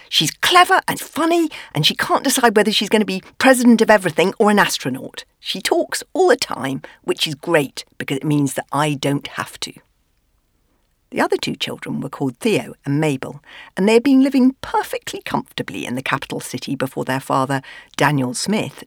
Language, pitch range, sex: English, 135-215 Hz, female